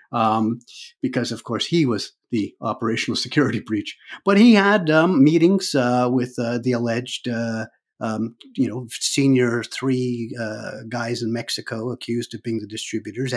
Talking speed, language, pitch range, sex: 155 wpm, English, 110-125 Hz, male